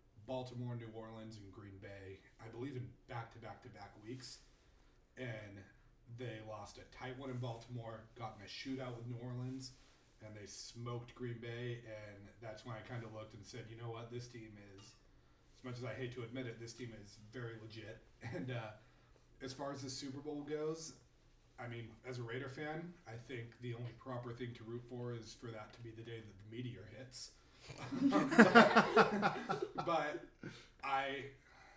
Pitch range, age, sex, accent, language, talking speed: 110-130 Hz, 40-59, male, American, English, 190 wpm